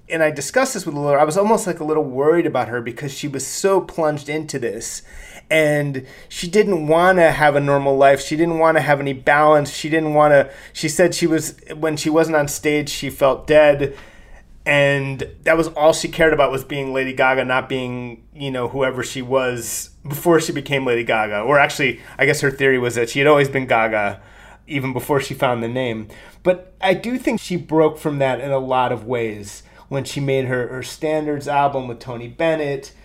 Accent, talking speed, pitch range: American, 215 wpm, 130-155 Hz